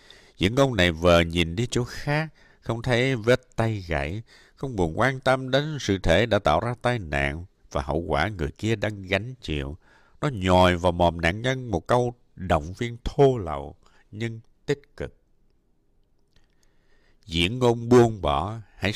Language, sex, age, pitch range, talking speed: Vietnamese, male, 60-79, 85-125 Hz, 170 wpm